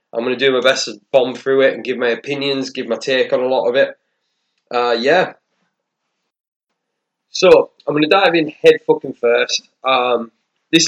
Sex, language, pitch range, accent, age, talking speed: male, English, 115-160 Hz, British, 20-39, 180 wpm